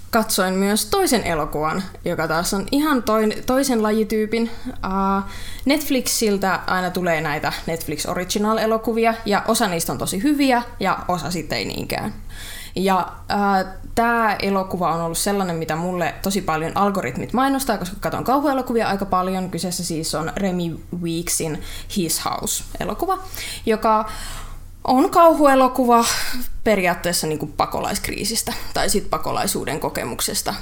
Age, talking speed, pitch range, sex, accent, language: 20-39, 120 wpm, 165-230 Hz, female, native, Finnish